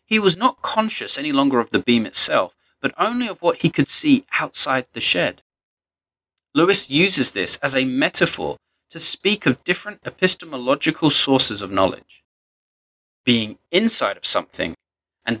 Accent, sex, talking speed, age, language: British, male, 150 wpm, 30-49, English